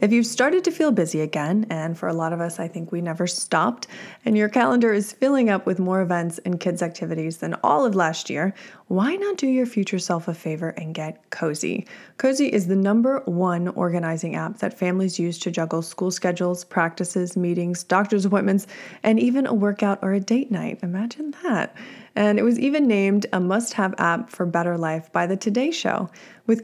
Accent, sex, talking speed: American, female, 205 wpm